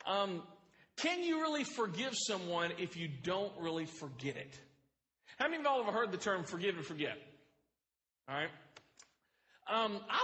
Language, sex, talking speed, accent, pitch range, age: English, male, 165 wpm, American, 160-215 Hz, 40-59